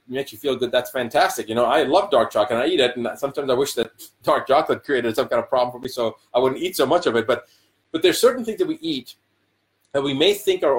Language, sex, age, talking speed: English, male, 30-49, 285 wpm